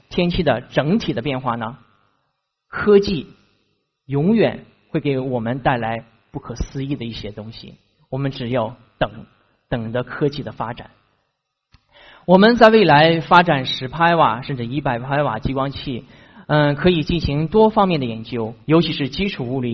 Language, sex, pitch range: Chinese, male, 125-170 Hz